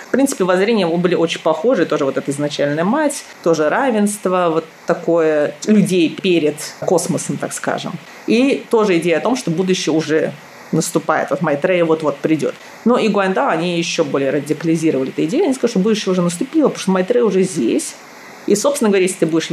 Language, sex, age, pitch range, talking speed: Russian, female, 30-49, 160-210 Hz, 180 wpm